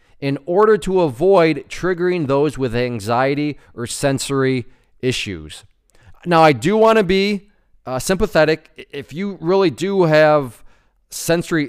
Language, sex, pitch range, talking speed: English, male, 125-170 Hz, 130 wpm